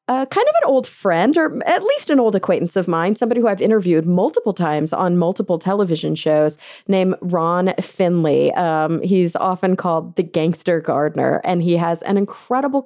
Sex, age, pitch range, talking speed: female, 30-49, 165-205 Hz, 180 wpm